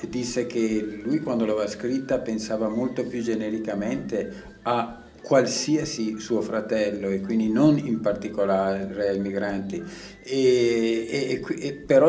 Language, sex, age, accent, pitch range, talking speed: Italian, male, 50-69, native, 105-125 Hz, 110 wpm